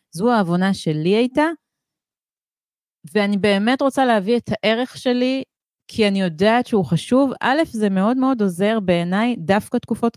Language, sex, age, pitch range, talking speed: Hebrew, female, 30-49, 180-250 Hz, 140 wpm